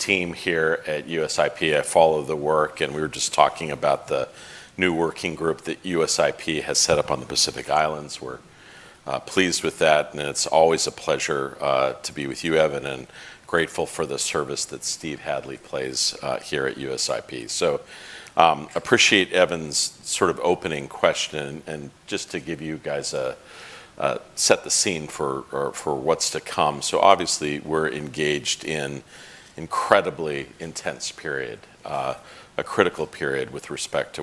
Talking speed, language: 170 wpm, English